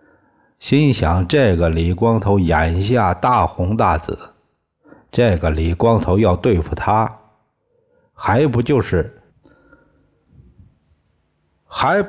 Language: Chinese